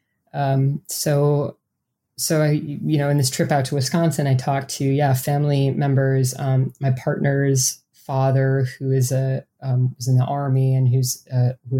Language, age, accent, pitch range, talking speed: English, 20-39, American, 130-140 Hz, 165 wpm